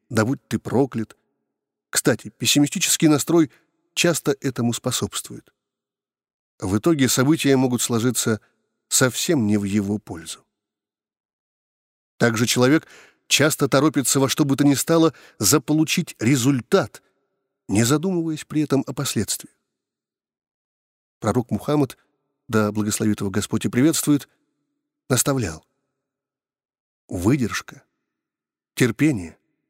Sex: male